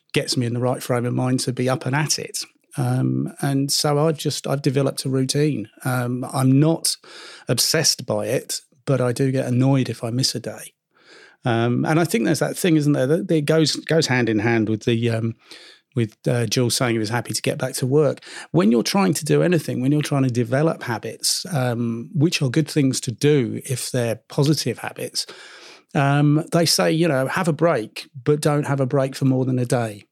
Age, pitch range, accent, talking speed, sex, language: 40-59, 125-150 Hz, British, 220 wpm, male, English